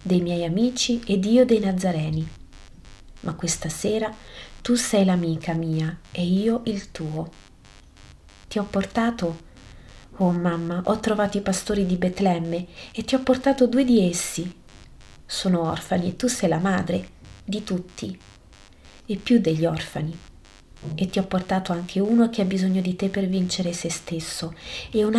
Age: 30-49